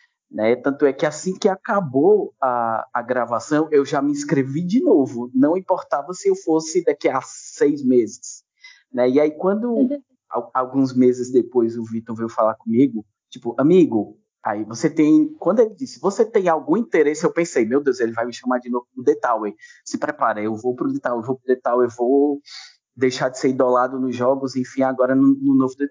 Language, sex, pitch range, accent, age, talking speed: Portuguese, male, 120-190 Hz, Brazilian, 20-39, 185 wpm